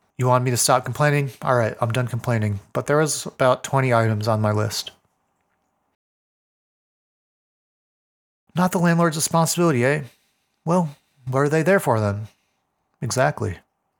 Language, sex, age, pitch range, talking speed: English, male, 30-49, 120-150 Hz, 140 wpm